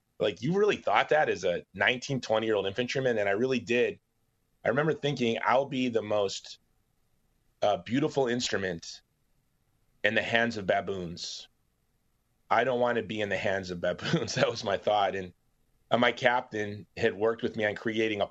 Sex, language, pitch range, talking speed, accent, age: male, English, 100-120 Hz, 185 wpm, American, 30-49